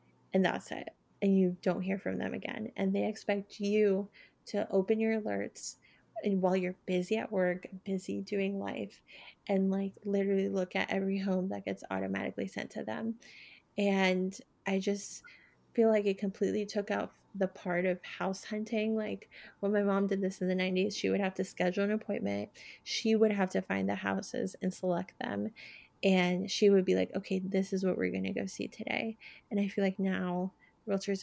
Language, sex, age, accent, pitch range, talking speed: English, female, 20-39, American, 180-200 Hz, 195 wpm